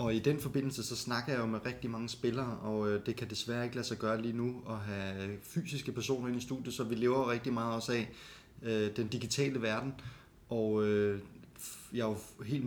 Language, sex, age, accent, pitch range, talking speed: Danish, male, 20-39, native, 110-125 Hz, 210 wpm